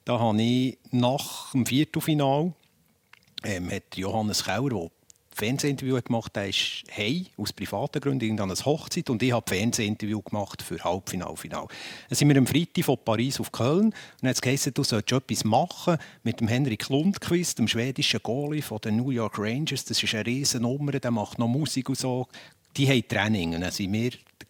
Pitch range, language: 110-145 Hz, German